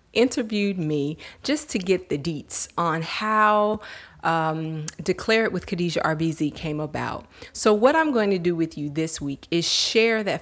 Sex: female